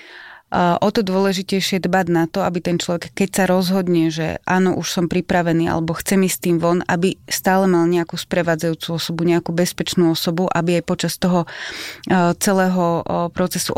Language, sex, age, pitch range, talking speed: Slovak, female, 30-49, 170-185 Hz, 165 wpm